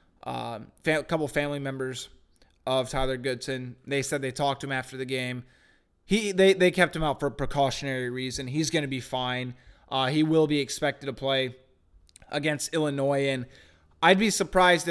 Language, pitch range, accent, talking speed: English, 135-155 Hz, American, 180 wpm